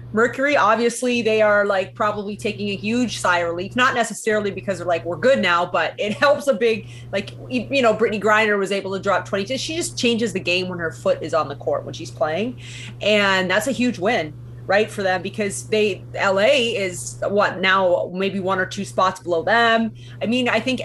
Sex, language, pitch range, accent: female, English, 170-220 Hz, American